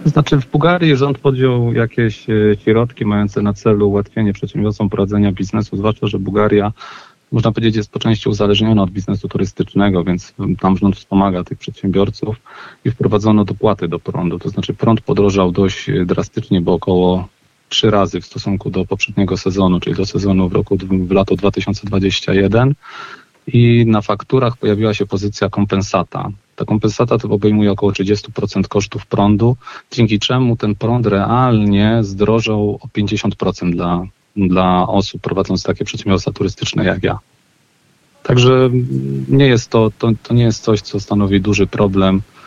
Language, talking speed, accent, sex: Polish, 150 wpm, native, male